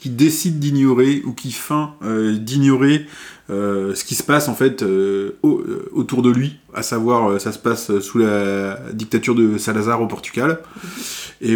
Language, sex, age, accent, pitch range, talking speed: French, male, 20-39, French, 105-130 Hz, 170 wpm